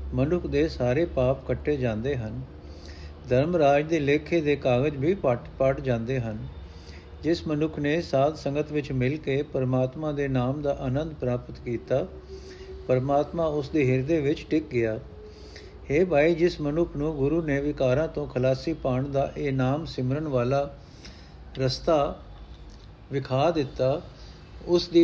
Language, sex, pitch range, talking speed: Punjabi, male, 125-155 Hz, 135 wpm